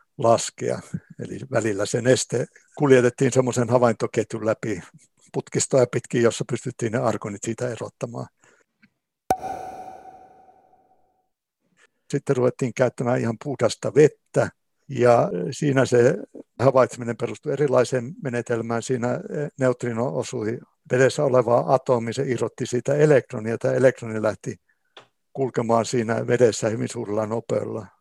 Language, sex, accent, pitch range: Finnish, male, native, 115-135 Hz